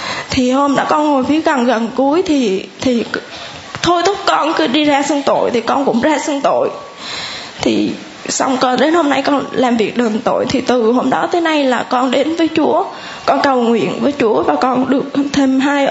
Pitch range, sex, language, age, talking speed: 255-300 Hz, female, Vietnamese, 10-29, 210 wpm